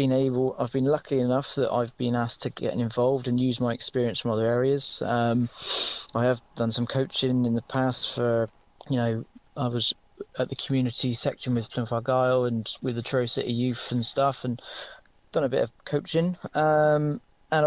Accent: British